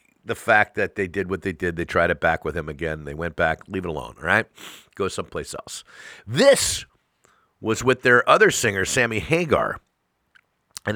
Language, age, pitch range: English, 50-69, 80-105 Hz